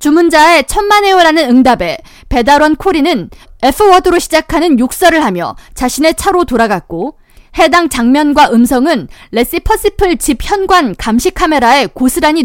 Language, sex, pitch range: Korean, female, 250-355 Hz